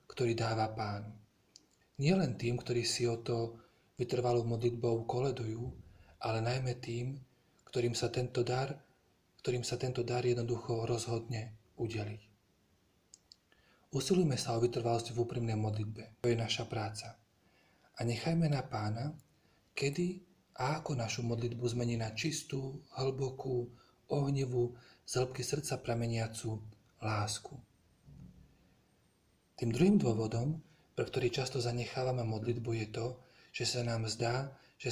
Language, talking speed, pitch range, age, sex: Slovak, 120 wpm, 115-130 Hz, 40-59, male